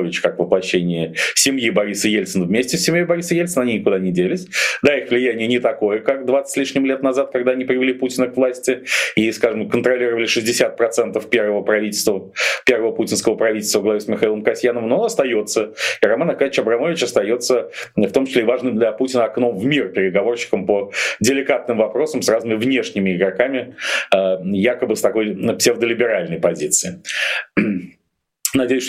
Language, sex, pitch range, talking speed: Russian, male, 100-130 Hz, 160 wpm